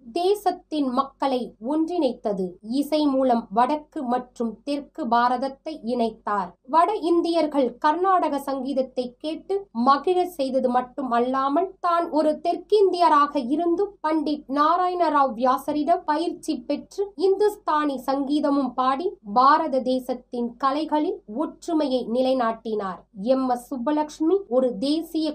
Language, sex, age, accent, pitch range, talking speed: Tamil, female, 20-39, native, 250-325 Hz, 90 wpm